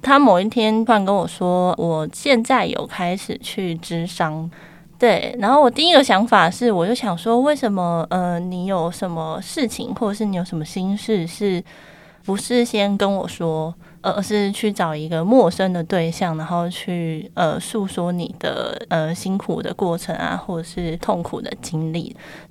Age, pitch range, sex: 20-39, 170-215 Hz, female